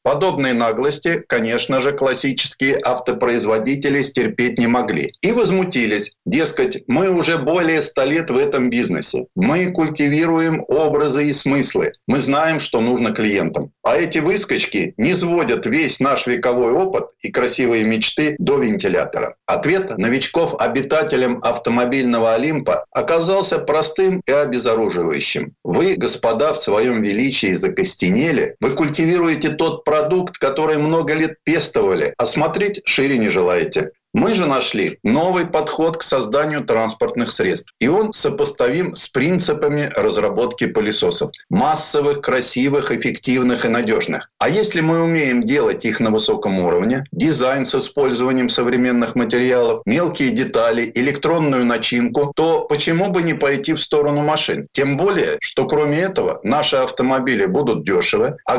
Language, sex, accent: Russian, male, native